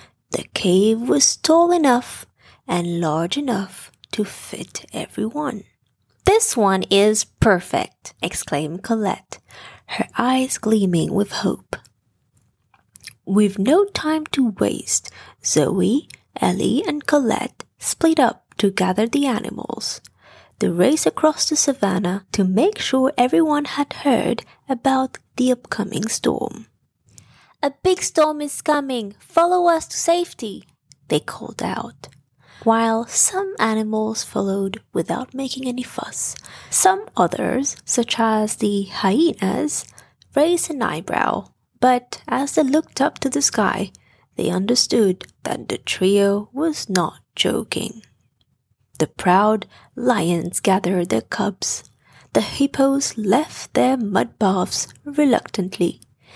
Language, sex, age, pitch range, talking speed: English, female, 20-39, 195-285 Hz, 115 wpm